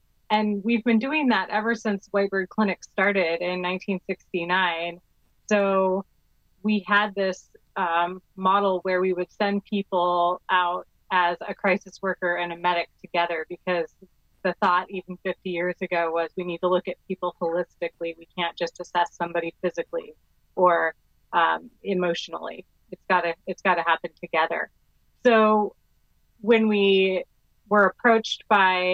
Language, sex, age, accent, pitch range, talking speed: English, female, 30-49, American, 175-195 Hz, 140 wpm